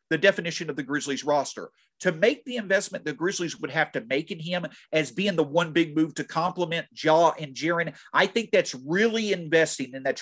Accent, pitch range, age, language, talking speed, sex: American, 150-195 Hz, 40-59, English, 210 wpm, male